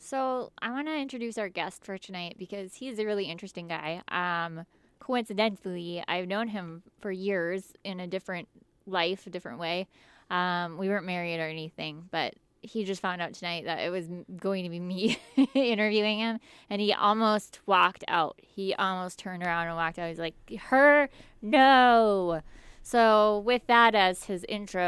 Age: 20-39